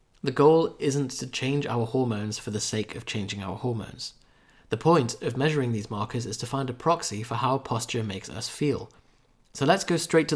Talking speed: 210 wpm